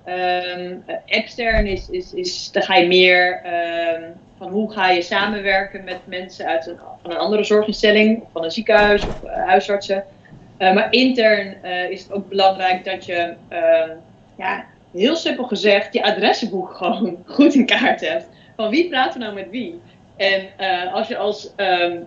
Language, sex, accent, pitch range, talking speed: Dutch, female, Dutch, 185-235 Hz, 175 wpm